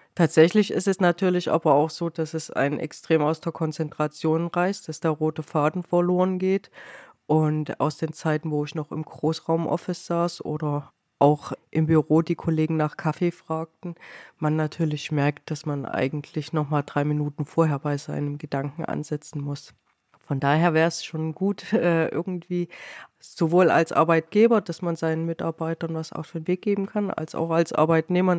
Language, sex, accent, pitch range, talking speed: German, female, German, 155-175 Hz, 170 wpm